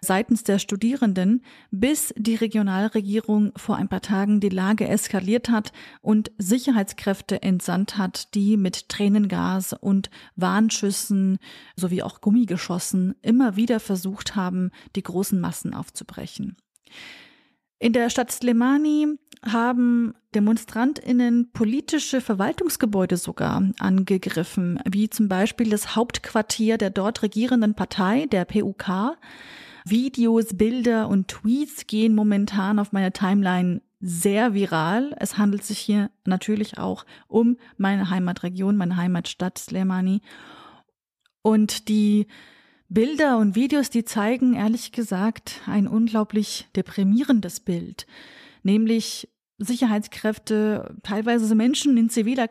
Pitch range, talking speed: 200-235 Hz, 110 wpm